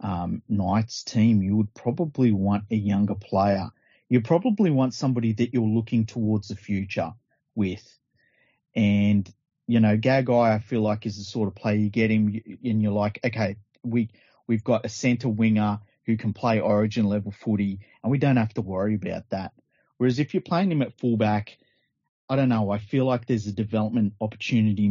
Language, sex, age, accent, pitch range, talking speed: English, male, 30-49, Australian, 105-125 Hz, 185 wpm